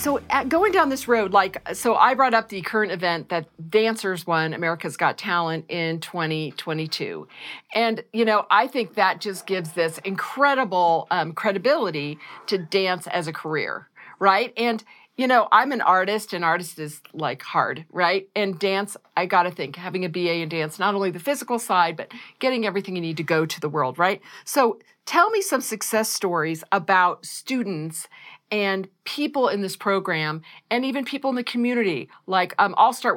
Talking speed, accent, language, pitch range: 185 wpm, American, English, 170-235 Hz